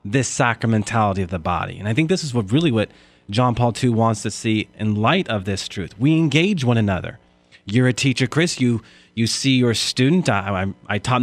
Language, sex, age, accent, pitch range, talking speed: English, male, 30-49, American, 100-135 Hz, 220 wpm